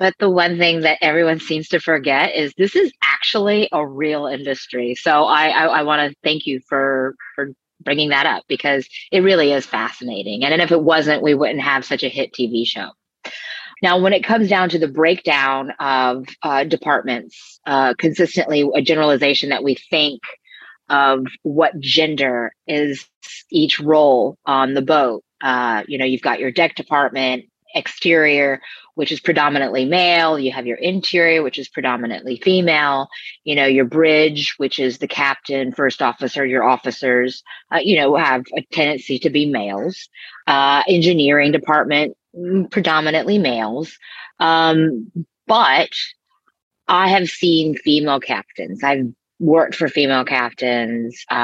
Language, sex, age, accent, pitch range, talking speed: English, female, 30-49, American, 135-165 Hz, 155 wpm